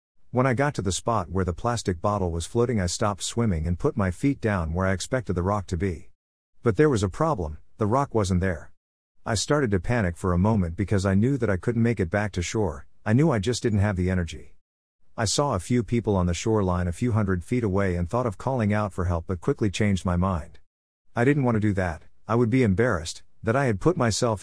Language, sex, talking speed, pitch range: English, male, 250 wpm, 90-115 Hz